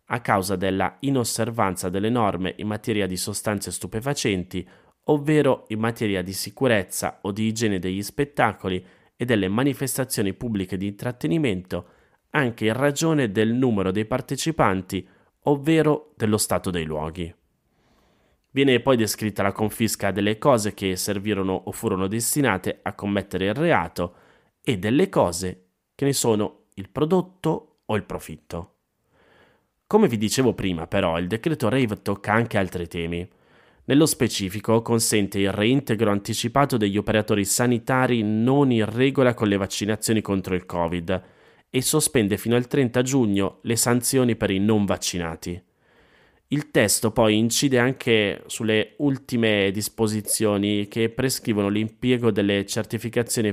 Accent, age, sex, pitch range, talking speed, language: native, 30-49, male, 95-125 Hz, 135 wpm, Italian